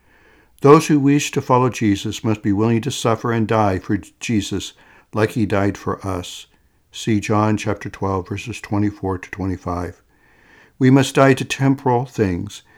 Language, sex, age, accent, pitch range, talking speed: English, male, 60-79, American, 100-130 Hz, 160 wpm